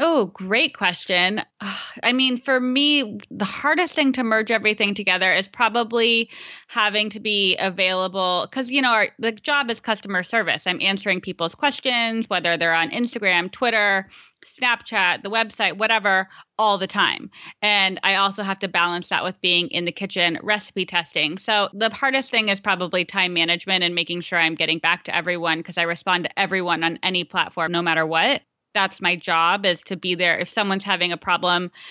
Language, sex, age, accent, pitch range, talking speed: English, female, 20-39, American, 175-220 Hz, 180 wpm